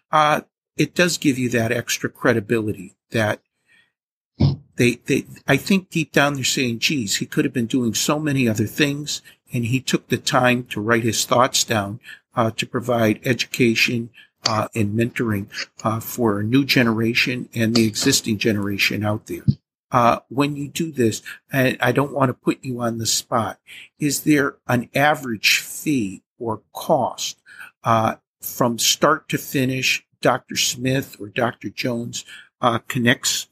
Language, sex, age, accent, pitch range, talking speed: English, male, 50-69, American, 115-135 Hz, 160 wpm